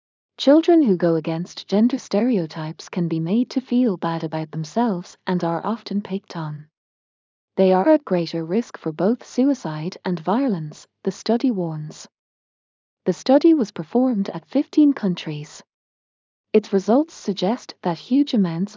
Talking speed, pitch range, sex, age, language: 145 wpm, 165-235 Hz, female, 30-49, English